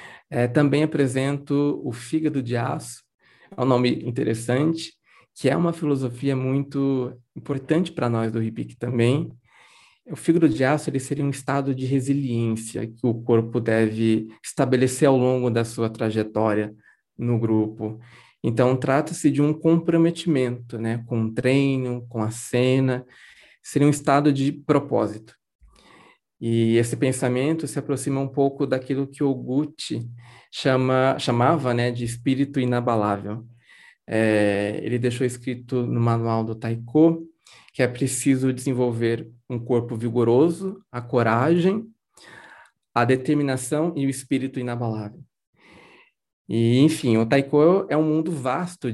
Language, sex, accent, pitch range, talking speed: Portuguese, male, Brazilian, 115-145 Hz, 130 wpm